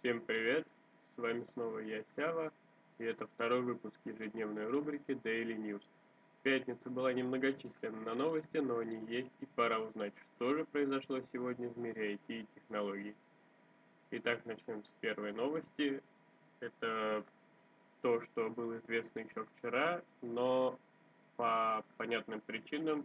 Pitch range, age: 115-130 Hz, 20-39